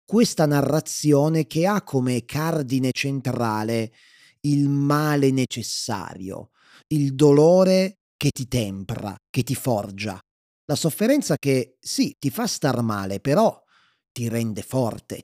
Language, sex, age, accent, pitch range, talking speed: Italian, male, 30-49, native, 115-145 Hz, 120 wpm